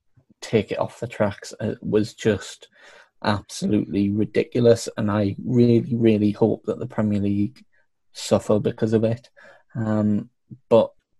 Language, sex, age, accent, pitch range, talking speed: English, male, 20-39, British, 100-115 Hz, 135 wpm